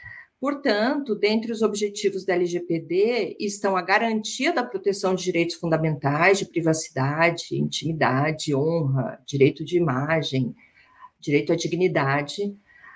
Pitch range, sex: 170-225 Hz, female